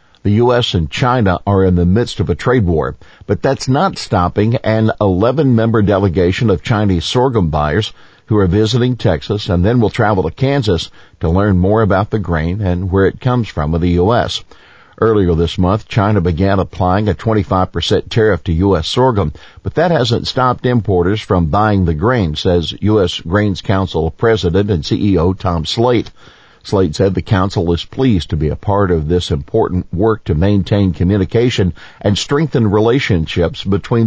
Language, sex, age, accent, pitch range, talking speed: English, male, 50-69, American, 90-110 Hz, 175 wpm